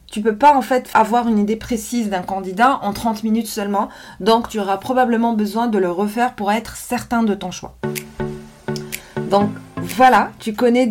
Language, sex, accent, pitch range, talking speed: French, female, French, 190-235 Hz, 185 wpm